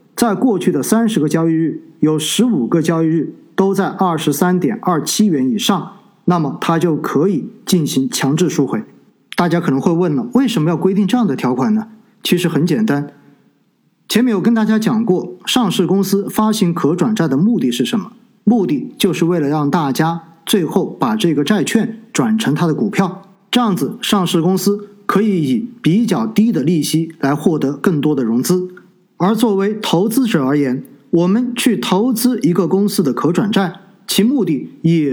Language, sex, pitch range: Chinese, male, 165-225 Hz